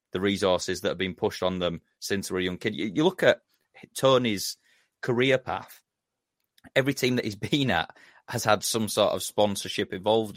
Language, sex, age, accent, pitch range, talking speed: English, male, 30-49, British, 90-105 Hz, 195 wpm